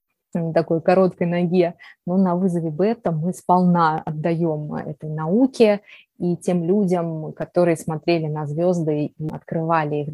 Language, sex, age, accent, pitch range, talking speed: Russian, female, 20-39, native, 165-205 Hz, 130 wpm